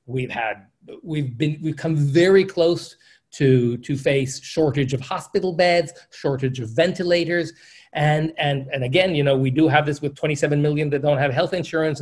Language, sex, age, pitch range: English, male, 30-49, 135-180 Hz